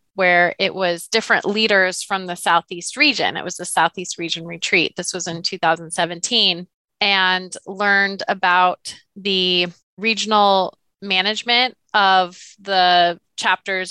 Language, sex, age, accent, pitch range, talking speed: English, female, 20-39, American, 180-210 Hz, 120 wpm